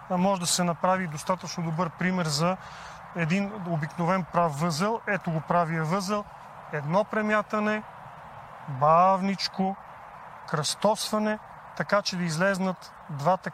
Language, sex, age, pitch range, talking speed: Bulgarian, male, 40-59, 165-200 Hz, 110 wpm